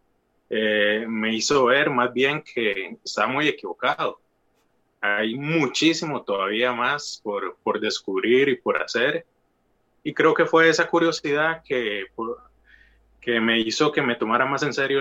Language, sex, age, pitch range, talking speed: Spanish, male, 20-39, 115-160 Hz, 145 wpm